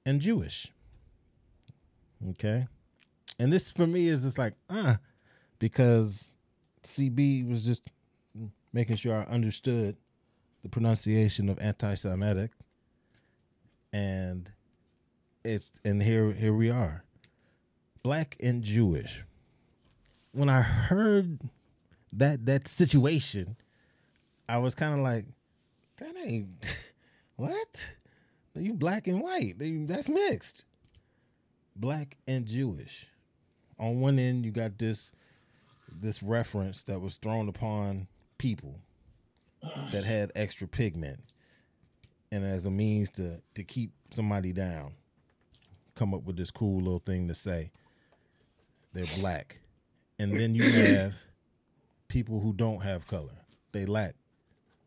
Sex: male